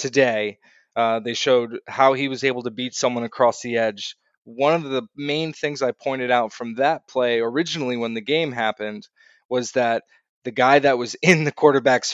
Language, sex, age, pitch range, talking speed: English, male, 20-39, 115-140 Hz, 195 wpm